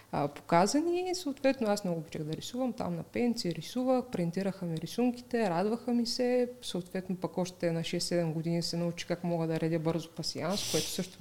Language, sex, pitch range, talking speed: Bulgarian, female, 175-210 Hz, 180 wpm